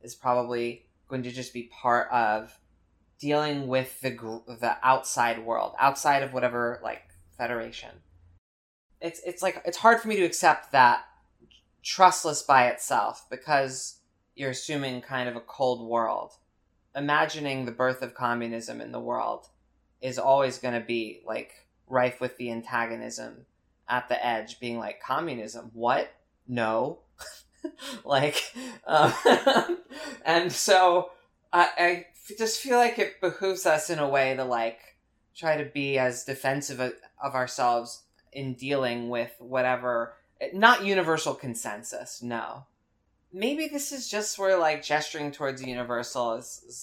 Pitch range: 115-150 Hz